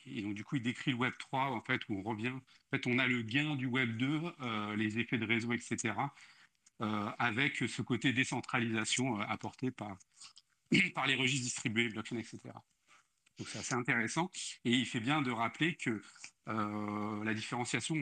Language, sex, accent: French, male, French